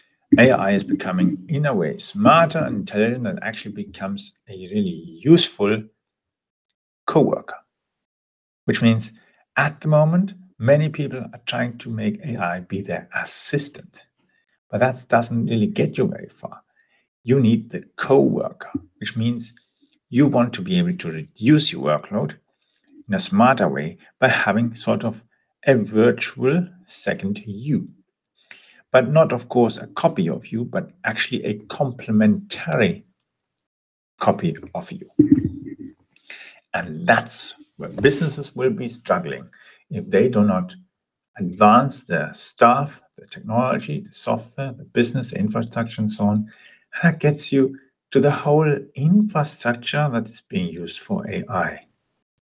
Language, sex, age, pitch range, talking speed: English, male, 50-69, 115-170 Hz, 135 wpm